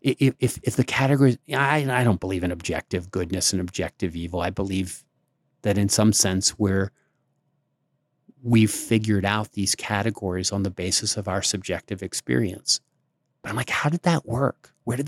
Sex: male